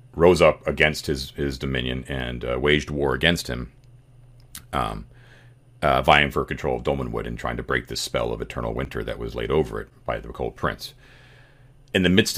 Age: 40-59